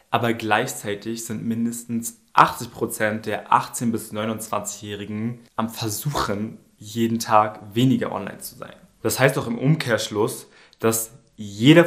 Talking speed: 120 wpm